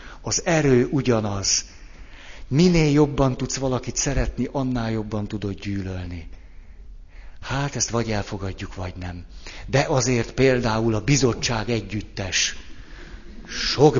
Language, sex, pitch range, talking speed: Hungarian, male, 95-130 Hz, 105 wpm